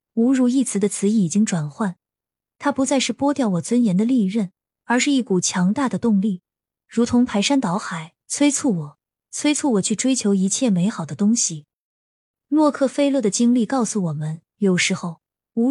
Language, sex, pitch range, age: Chinese, female, 190-250 Hz, 20-39